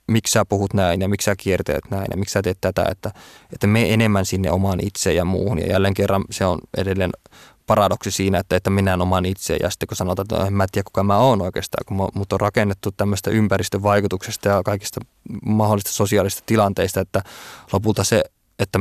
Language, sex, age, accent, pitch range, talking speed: Finnish, male, 20-39, native, 95-110 Hz, 200 wpm